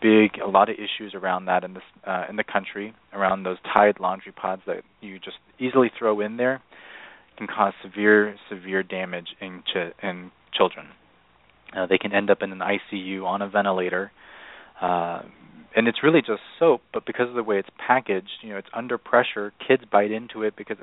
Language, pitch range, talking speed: English, 95-115 Hz, 195 wpm